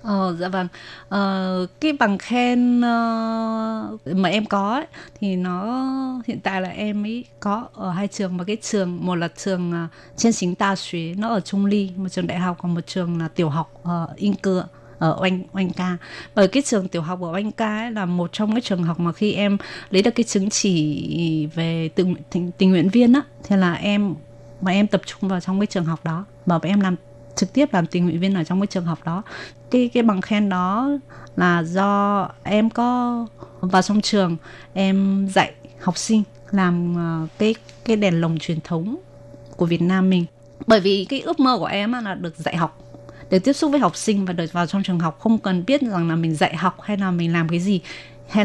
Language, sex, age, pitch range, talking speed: Vietnamese, female, 20-39, 170-210 Hz, 220 wpm